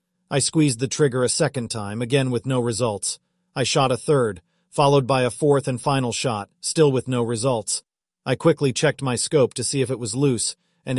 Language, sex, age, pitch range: English, male, 40-59, 120-145 Hz